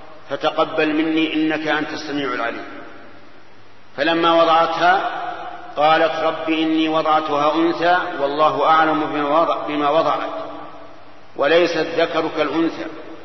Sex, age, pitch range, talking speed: male, 50-69, 145-165 Hz, 90 wpm